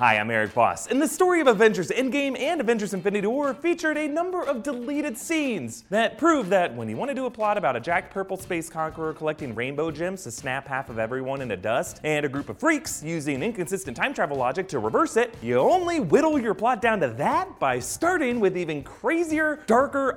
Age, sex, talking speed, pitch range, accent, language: 30-49, male, 215 wpm, 175-265 Hz, American, English